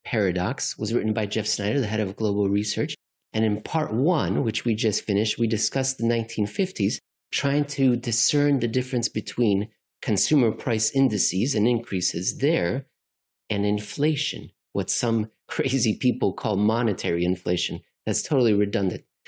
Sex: male